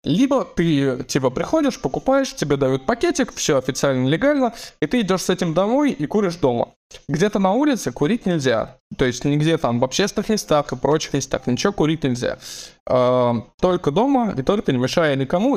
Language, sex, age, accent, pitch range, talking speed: Russian, male, 20-39, native, 130-200 Hz, 175 wpm